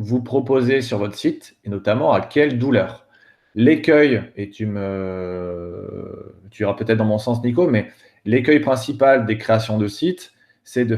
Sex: male